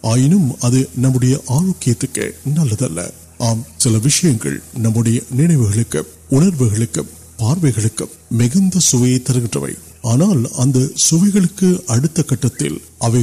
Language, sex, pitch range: Urdu, male, 115-155 Hz